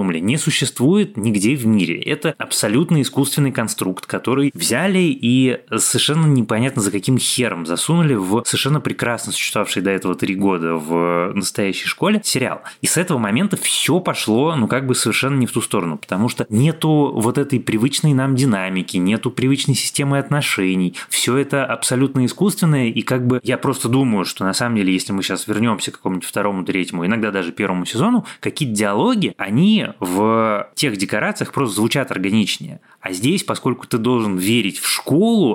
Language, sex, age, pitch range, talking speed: Russian, male, 20-39, 95-135 Hz, 165 wpm